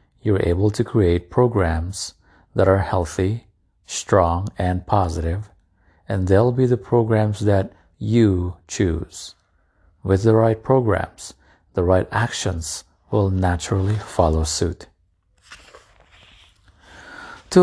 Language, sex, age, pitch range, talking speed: English, male, 50-69, 90-110 Hz, 105 wpm